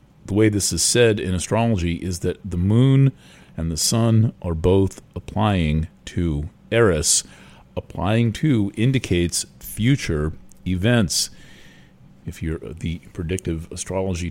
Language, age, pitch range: English, 40-59, 85-110 Hz